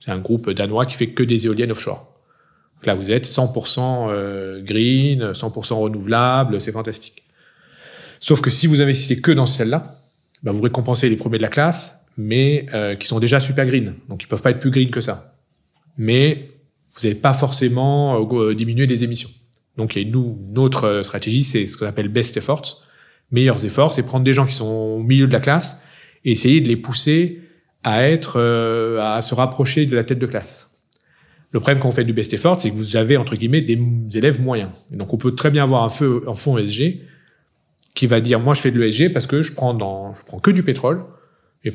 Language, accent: French, French